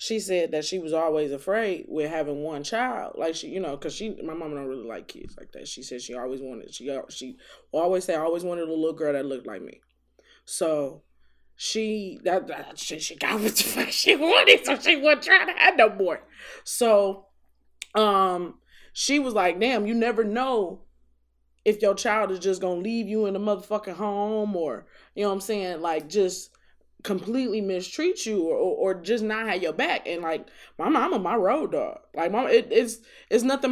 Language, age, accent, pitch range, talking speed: English, 20-39, American, 160-230 Hz, 210 wpm